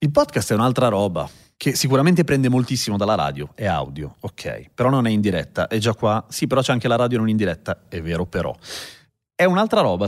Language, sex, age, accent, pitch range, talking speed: Italian, male, 30-49, native, 100-140 Hz, 220 wpm